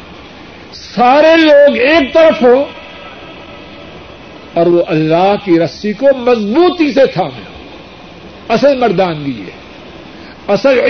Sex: male